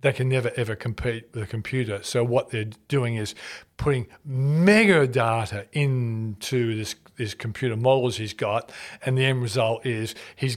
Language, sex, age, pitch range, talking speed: English, male, 40-59, 120-155 Hz, 165 wpm